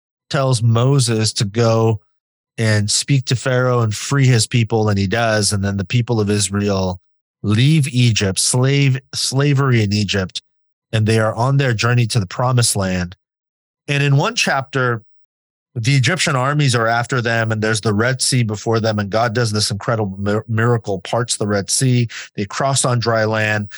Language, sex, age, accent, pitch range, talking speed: English, male, 30-49, American, 110-135 Hz, 175 wpm